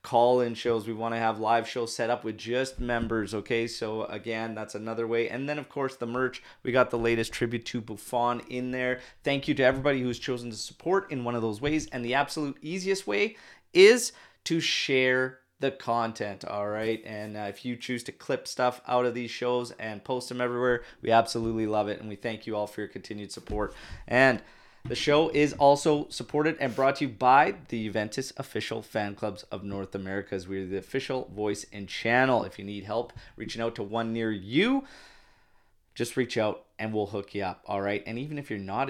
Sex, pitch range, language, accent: male, 105-125 Hz, English, American